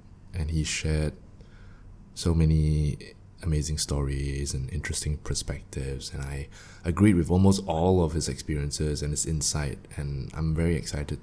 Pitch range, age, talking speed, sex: 75-100 Hz, 20-39, 140 wpm, male